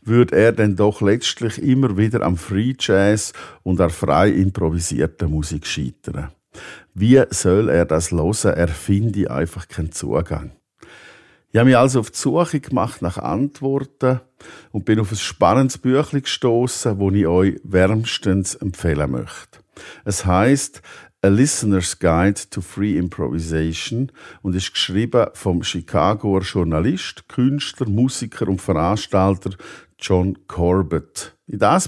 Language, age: German, 50-69